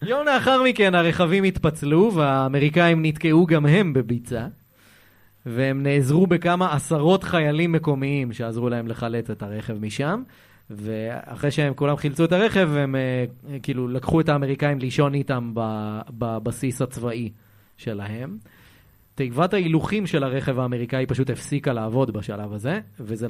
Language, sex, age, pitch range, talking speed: Hebrew, male, 30-49, 110-145 Hz, 125 wpm